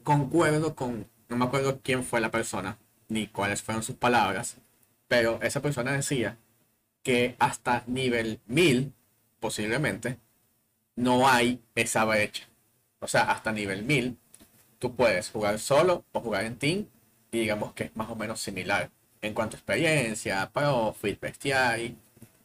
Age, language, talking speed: 30-49, Spanish, 145 wpm